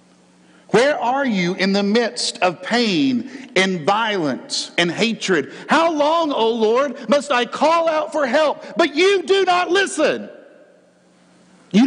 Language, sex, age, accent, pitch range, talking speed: English, male, 50-69, American, 165-270 Hz, 140 wpm